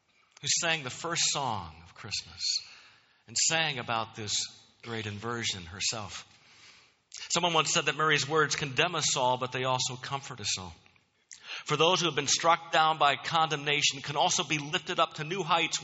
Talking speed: 175 wpm